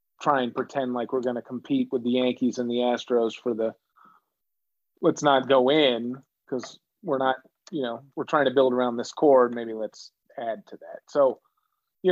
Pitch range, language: 120-180 Hz, English